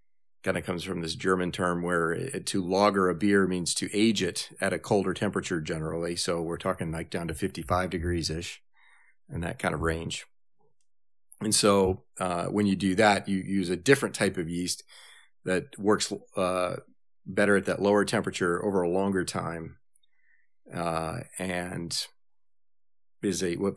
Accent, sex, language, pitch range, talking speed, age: American, male, English, 85-100 Hz, 160 wpm, 40-59